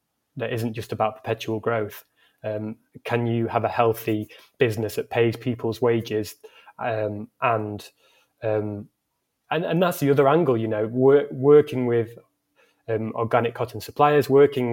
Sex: male